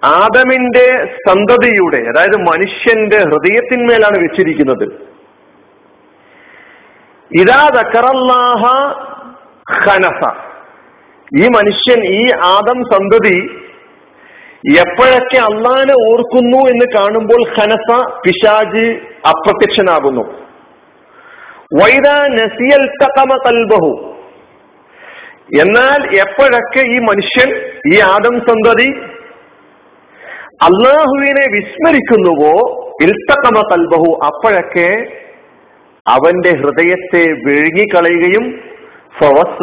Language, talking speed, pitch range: Malayalam, 55 wpm, 170-265 Hz